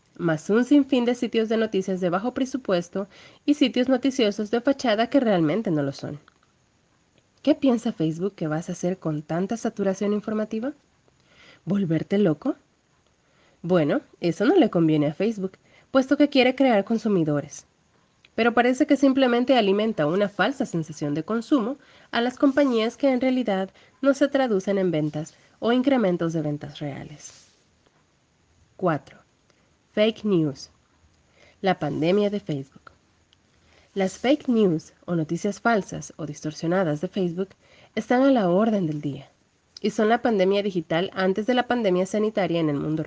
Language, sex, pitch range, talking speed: Spanish, female, 170-245 Hz, 150 wpm